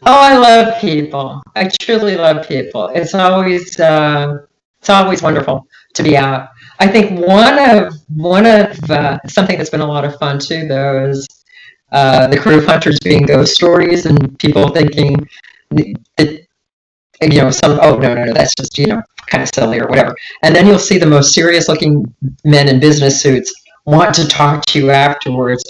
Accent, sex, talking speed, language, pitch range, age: American, female, 185 wpm, English, 135-185 Hz, 40-59